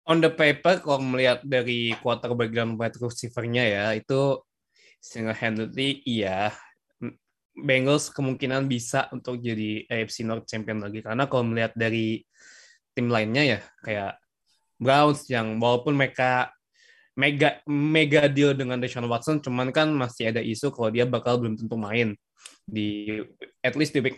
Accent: native